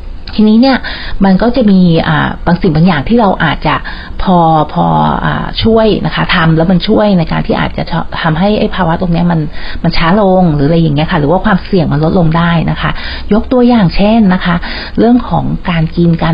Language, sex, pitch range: Thai, female, 165-200 Hz